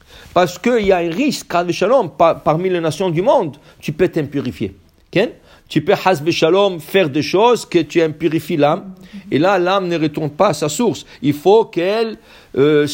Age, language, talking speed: 50-69, English, 200 wpm